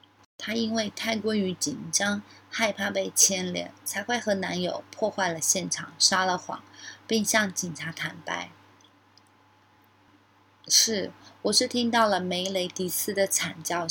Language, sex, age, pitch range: Chinese, female, 30-49, 145-215 Hz